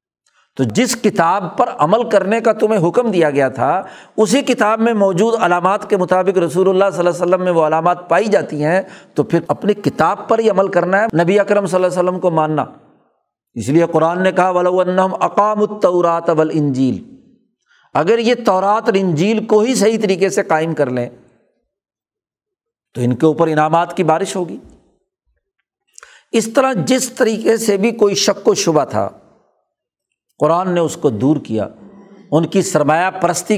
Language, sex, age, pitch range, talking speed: Urdu, male, 60-79, 160-210 Hz, 175 wpm